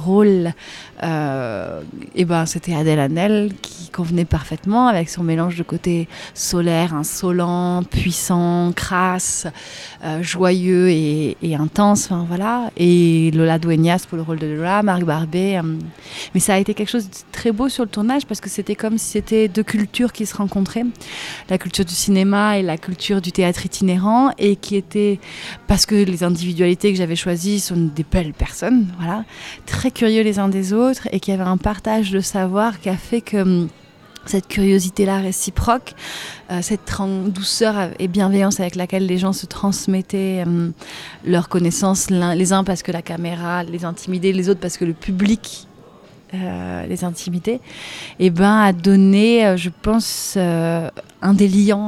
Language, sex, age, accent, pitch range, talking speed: French, female, 30-49, French, 175-205 Hz, 160 wpm